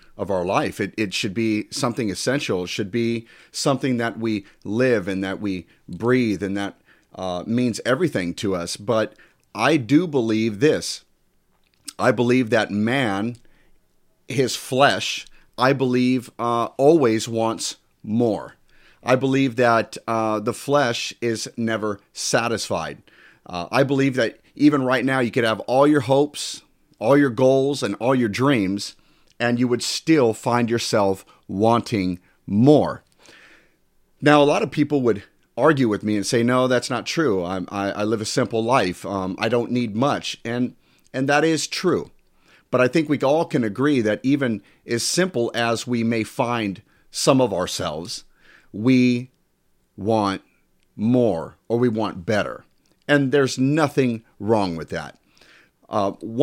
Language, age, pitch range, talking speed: English, 40-59, 105-130 Hz, 155 wpm